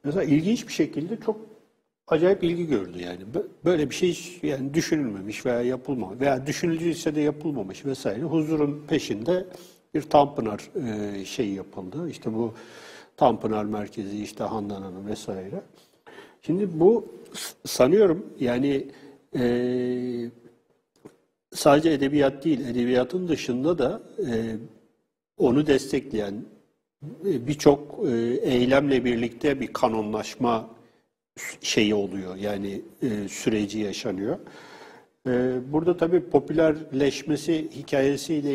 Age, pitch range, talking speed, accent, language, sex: 60-79, 120-145 Hz, 95 wpm, native, Turkish, male